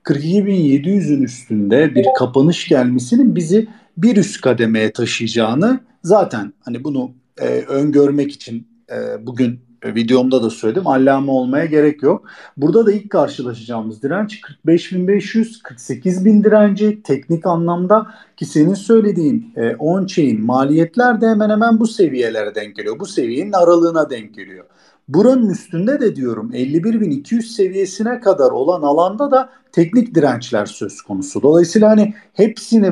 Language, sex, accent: Turkish, male, native